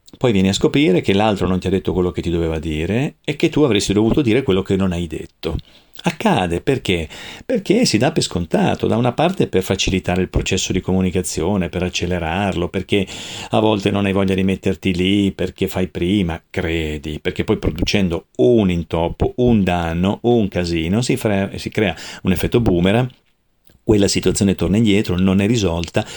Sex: male